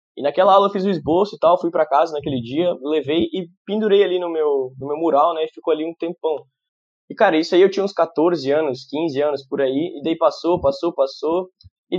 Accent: Brazilian